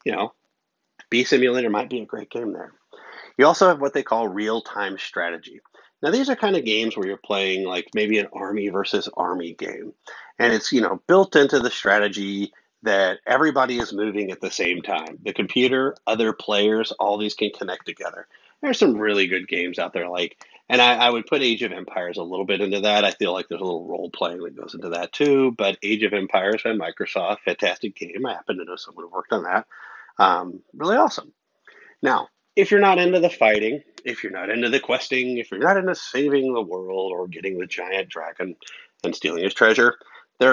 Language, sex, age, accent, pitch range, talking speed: English, male, 30-49, American, 100-130 Hz, 210 wpm